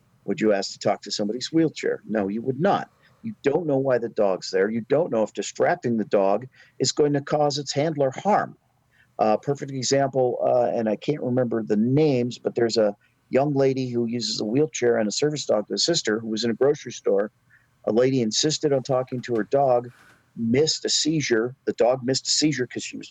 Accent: American